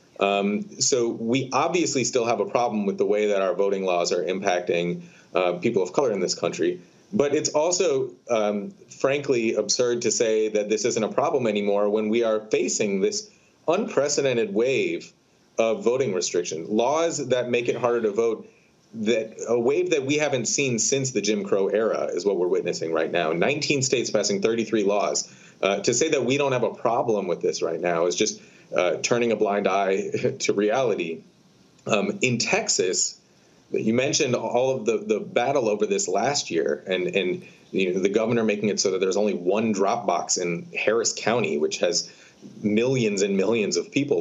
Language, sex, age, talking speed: English, male, 30-49, 185 wpm